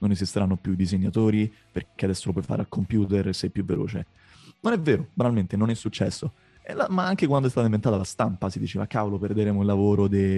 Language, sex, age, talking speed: Italian, male, 30-49, 230 wpm